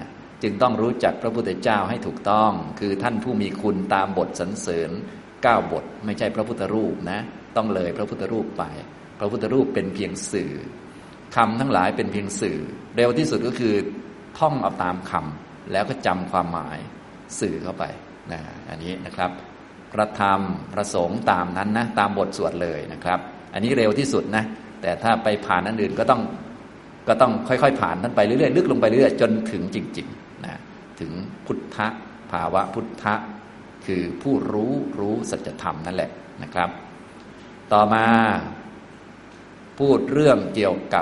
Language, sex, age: Thai, male, 20-39